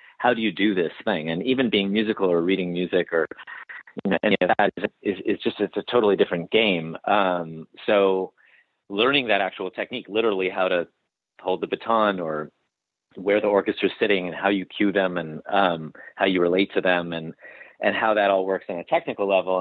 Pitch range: 85-100 Hz